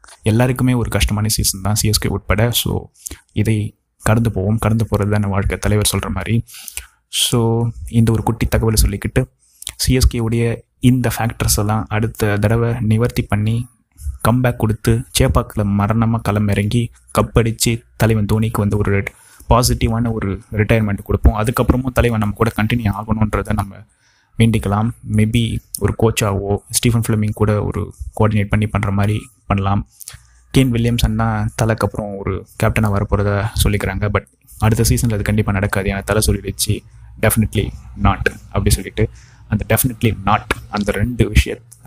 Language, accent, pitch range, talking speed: Tamil, native, 100-115 Hz, 135 wpm